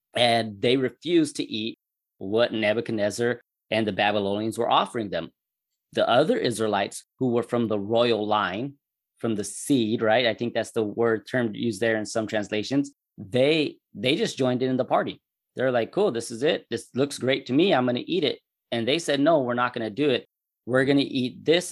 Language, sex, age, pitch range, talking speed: English, male, 20-39, 105-125 Hz, 205 wpm